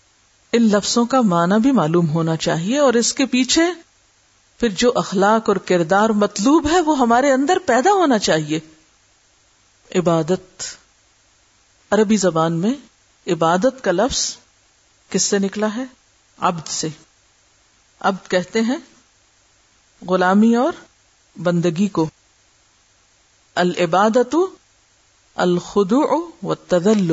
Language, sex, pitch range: Urdu, female, 155-240 Hz